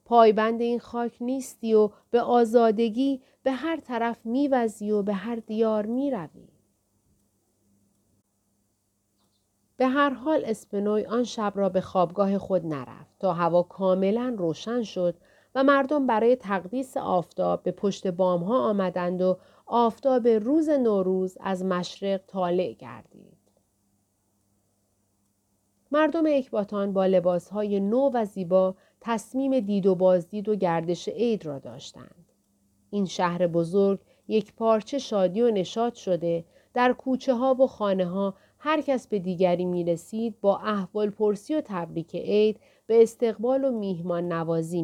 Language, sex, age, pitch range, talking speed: Persian, female, 40-59, 175-235 Hz, 130 wpm